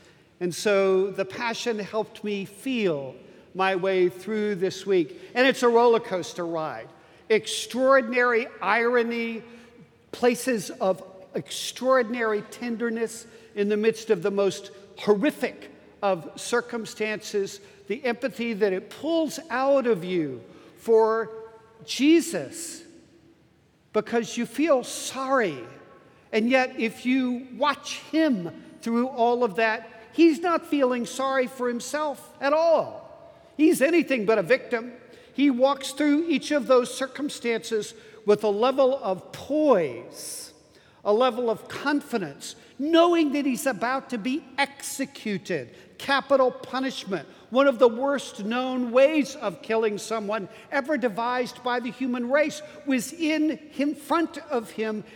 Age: 50-69